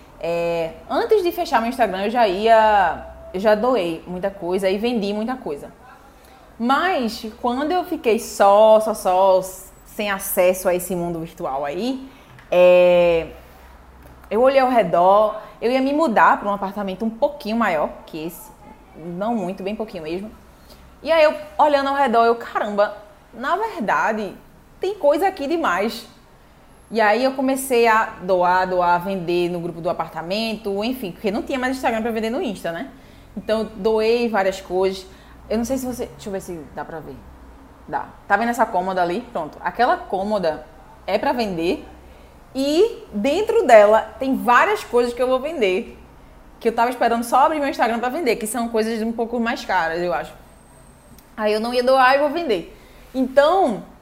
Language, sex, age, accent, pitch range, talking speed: English, female, 20-39, Brazilian, 185-255 Hz, 175 wpm